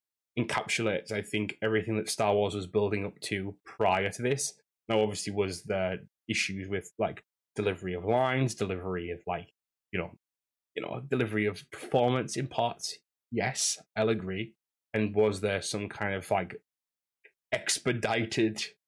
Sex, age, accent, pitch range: male, 10-29, British, 100-110 Hz